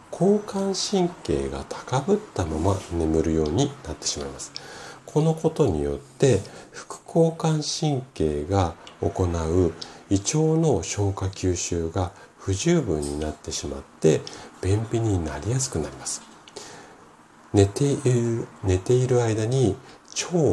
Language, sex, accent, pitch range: Japanese, male, native, 80-120 Hz